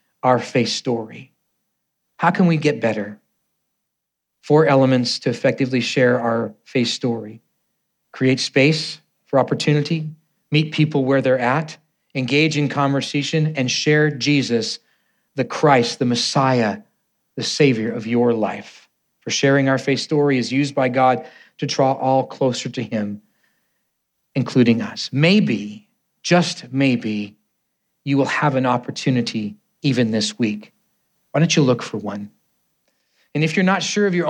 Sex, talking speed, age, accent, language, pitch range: male, 140 wpm, 40-59, American, English, 130-155 Hz